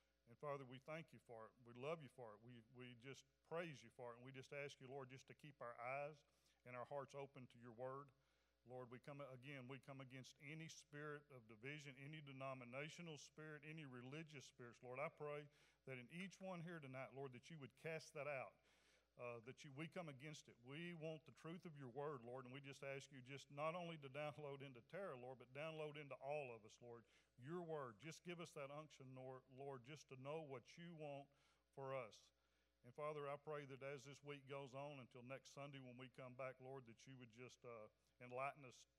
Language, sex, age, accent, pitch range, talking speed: English, male, 40-59, American, 125-150 Hz, 225 wpm